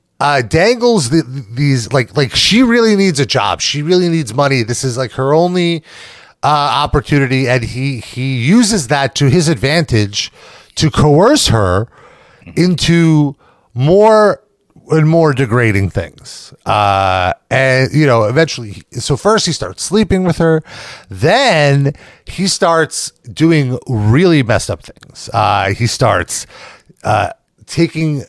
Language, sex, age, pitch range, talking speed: English, male, 30-49, 125-165 Hz, 135 wpm